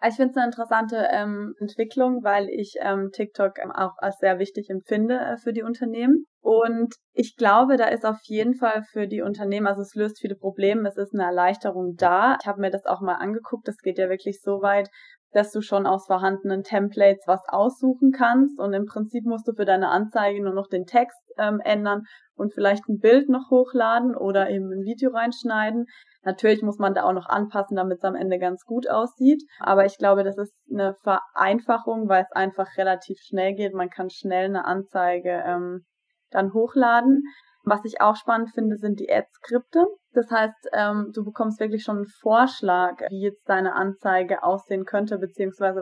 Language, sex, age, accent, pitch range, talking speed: German, female, 20-39, German, 195-230 Hz, 195 wpm